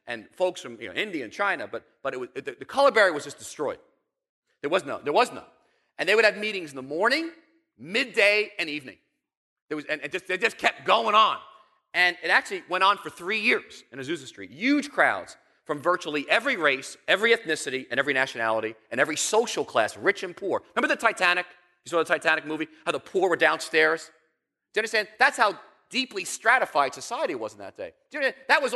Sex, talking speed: male, 215 wpm